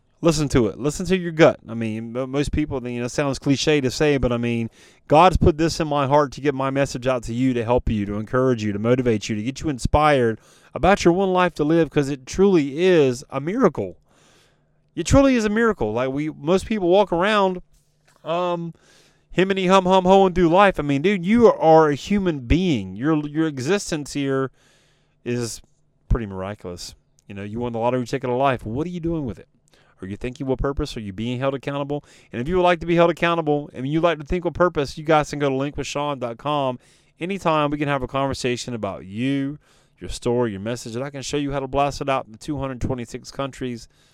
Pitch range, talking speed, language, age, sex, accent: 120-160 Hz, 230 wpm, English, 30-49, male, American